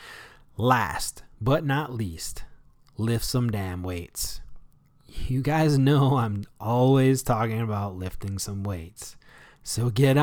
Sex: male